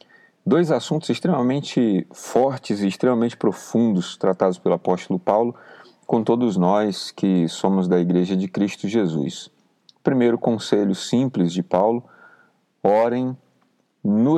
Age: 40-59